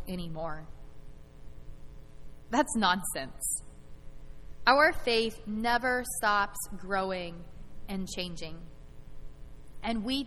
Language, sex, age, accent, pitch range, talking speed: English, female, 20-39, American, 190-275 Hz, 70 wpm